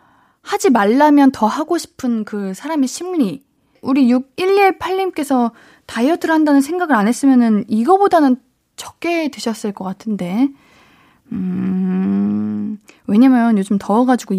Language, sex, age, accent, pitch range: Korean, female, 20-39, native, 205-280 Hz